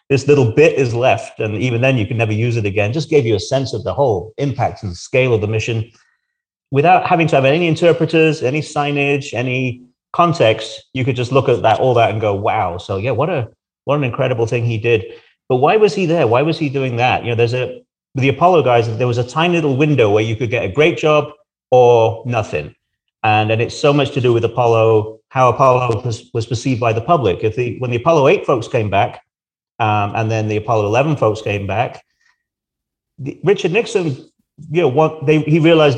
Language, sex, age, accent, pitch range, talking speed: English, male, 40-59, British, 110-145 Hz, 225 wpm